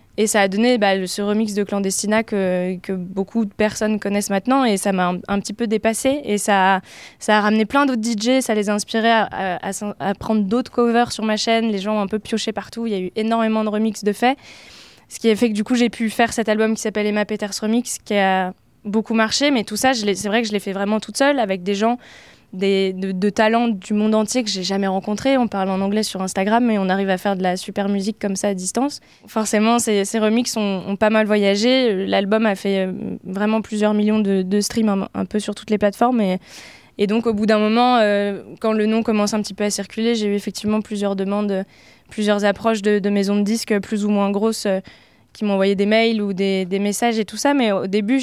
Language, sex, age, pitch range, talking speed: French, female, 20-39, 200-225 Hz, 255 wpm